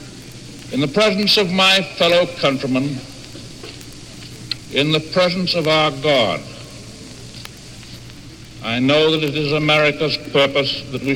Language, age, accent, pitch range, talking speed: English, 60-79, American, 125-165 Hz, 120 wpm